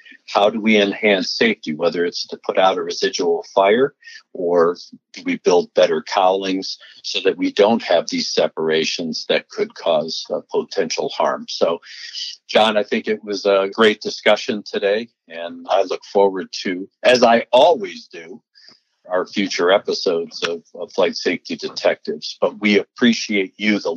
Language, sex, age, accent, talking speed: English, male, 60-79, American, 160 wpm